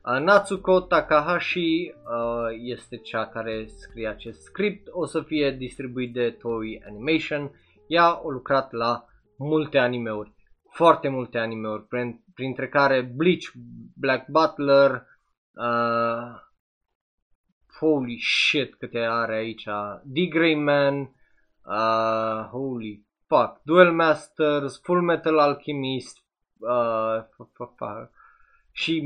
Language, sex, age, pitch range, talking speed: Romanian, male, 20-39, 110-150 Hz, 90 wpm